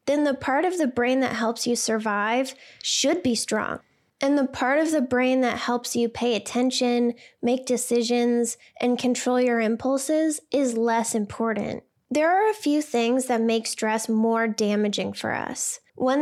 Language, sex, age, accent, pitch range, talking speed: English, female, 10-29, American, 230-260 Hz, 170 wpm